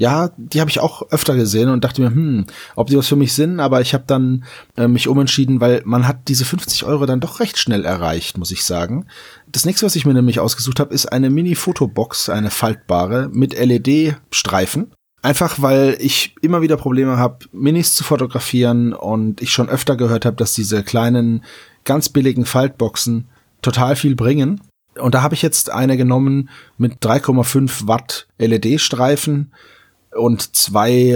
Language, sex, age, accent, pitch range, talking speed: German, male, 30-49, German, 115-140 Hz, 175 wpm